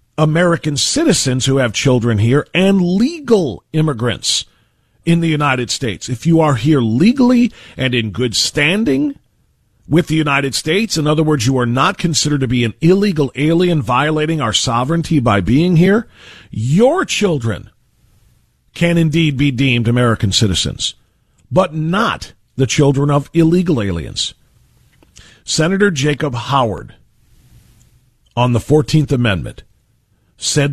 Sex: male